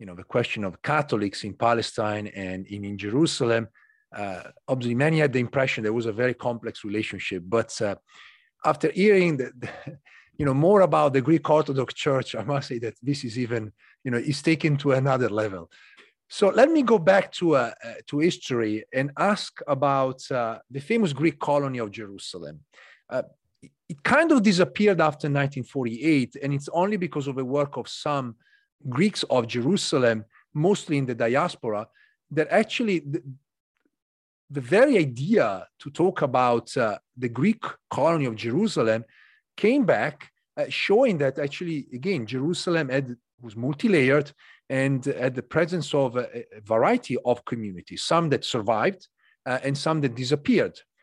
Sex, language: male, English